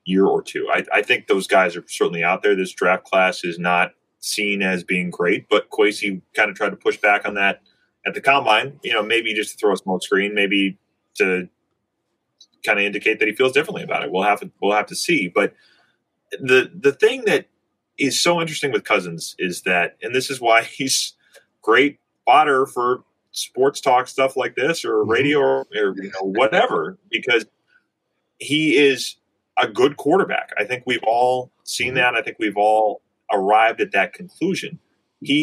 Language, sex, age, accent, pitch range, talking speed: English, male, 30-49, American, 100-150 Hz, 195 wpm